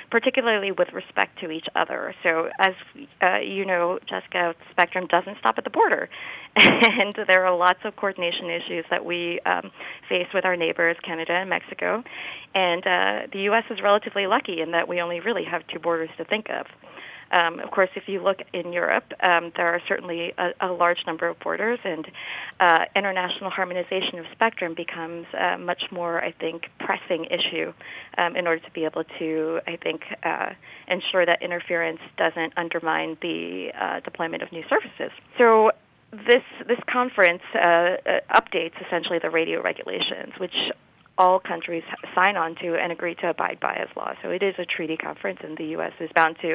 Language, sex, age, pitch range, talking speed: English, female, 30-49, 170-205 Hz, 185 wpm